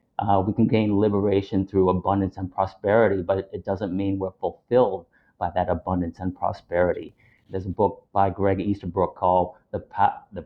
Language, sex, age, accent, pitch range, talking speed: English, male, 30-49, American, 95-105 Hz, 170 wpm